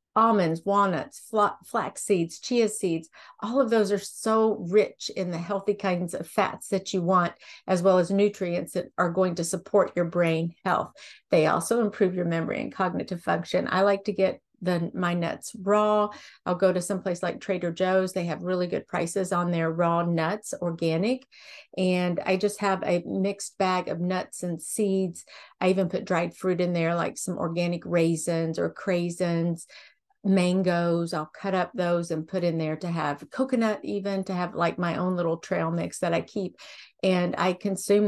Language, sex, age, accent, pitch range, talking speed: English, female, 50-69, American, 175-205 Hz, 185 wpm